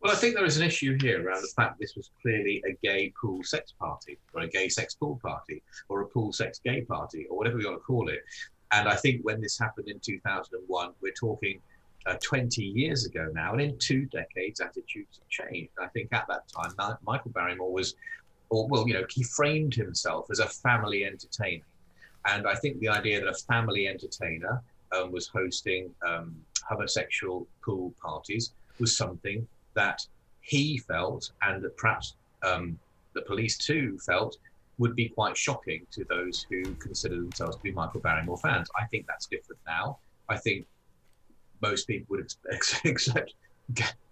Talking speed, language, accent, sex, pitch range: 185 wpm, English, British, male, 100-130 Hz